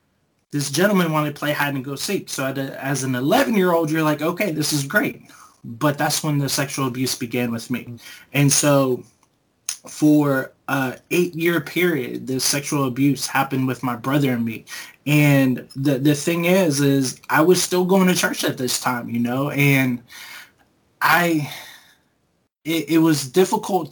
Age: 20-39